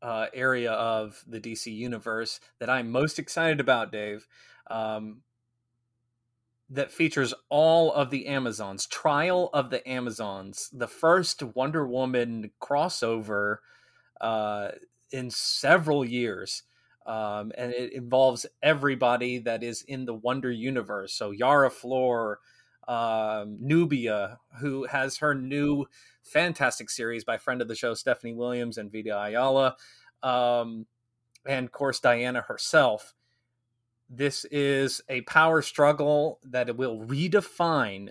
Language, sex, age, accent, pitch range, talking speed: English, male, 30-49, American, 115-135 Hz, 125 wpm